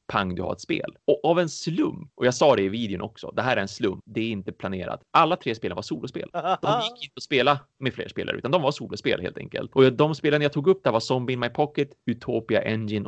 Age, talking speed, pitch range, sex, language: 30-49, 265 wpm, 100-135 Hz, male, Swedish